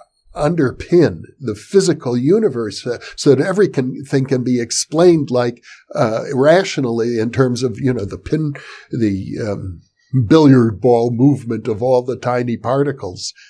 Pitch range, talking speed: 125-170 Hz, 135 wpm